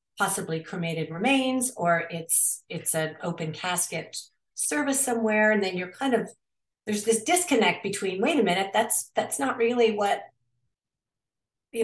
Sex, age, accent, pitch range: female, 40-59, American, 175-225 Hz